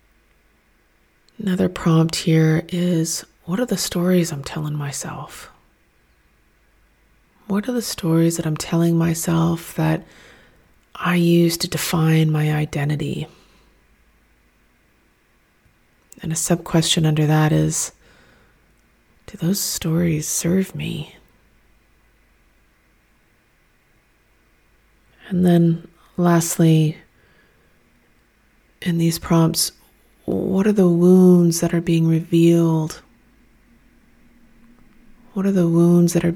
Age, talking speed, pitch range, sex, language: 30-49, 95 wpm, 160-180 Hz, female, English